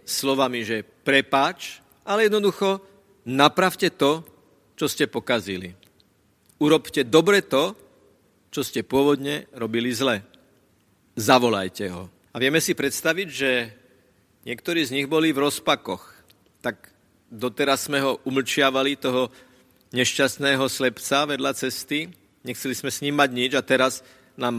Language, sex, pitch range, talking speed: Slovak, male, 120-160 Hz, 115 wpm